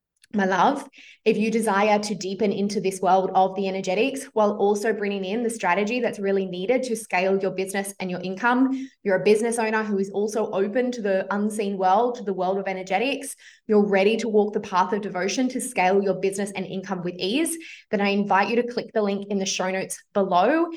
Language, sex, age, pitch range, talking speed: English, female, 20-39, 195-225 Hz, 215 wpm